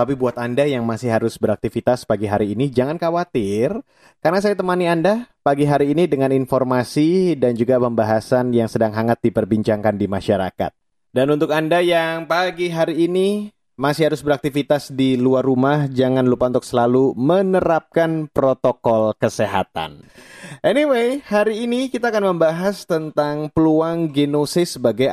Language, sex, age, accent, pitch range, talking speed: Indonesian, male, 30-49, native, 125-170 Hz, 145 wpm